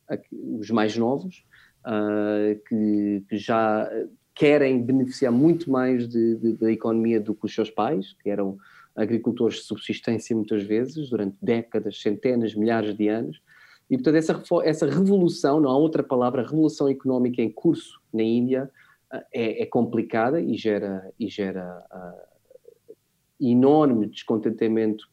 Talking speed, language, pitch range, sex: 140 wpm, Portuguese, 110-145 Hz, male